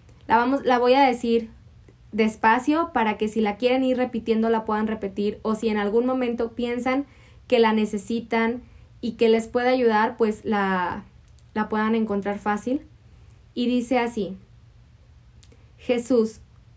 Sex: female